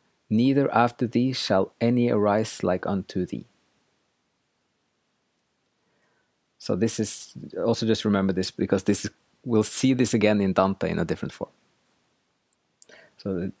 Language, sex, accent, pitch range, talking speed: English, male, Norwegian, 100-120 Hz, 135 wpm